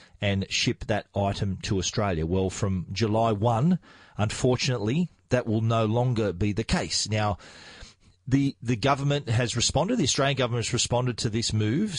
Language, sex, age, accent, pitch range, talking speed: English, male, 40-59, Australian, 105-130 Hz, 160 wpm